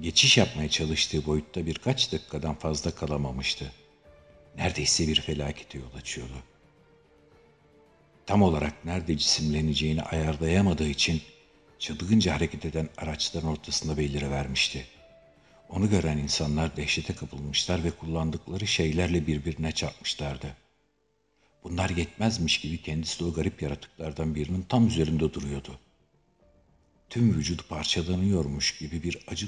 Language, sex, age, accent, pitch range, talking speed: Turkish, male, 60-79, native, 75-90 Hz, 110 wpm